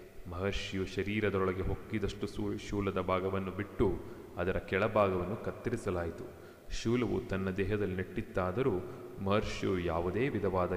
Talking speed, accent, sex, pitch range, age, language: 95 wpm, native, male, 90-105 Hz, 30-49, Kannada